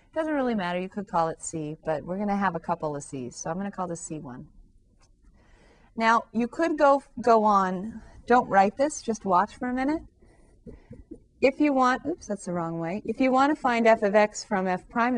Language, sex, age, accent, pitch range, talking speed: English, female, 30-49, American, 175-235 Hz, 225 wpm